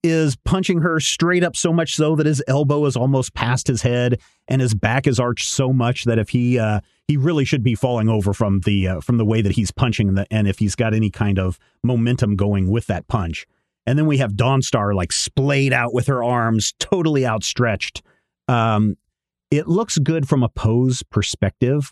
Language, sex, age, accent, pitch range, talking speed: English, male, 30-49, American, 105-140 Hz, 210 wpm